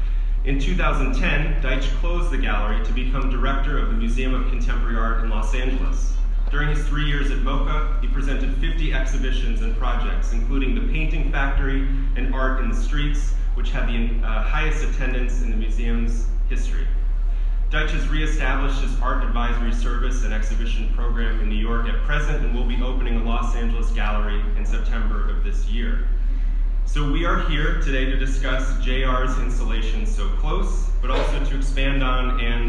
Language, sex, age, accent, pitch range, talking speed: English, male, 30-49, American, 115-135 Hz, 175 wpm